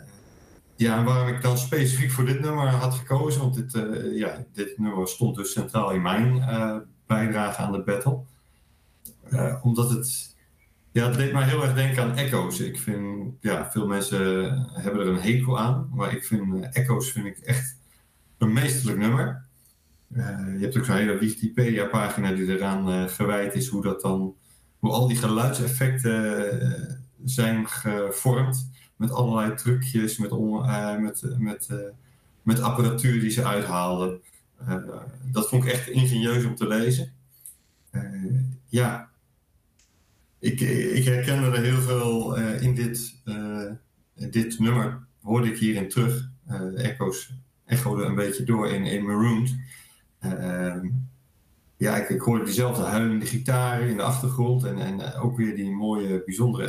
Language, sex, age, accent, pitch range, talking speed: Dutch, male, 50-69, Dutch, 105-130 Hz, 155 wpm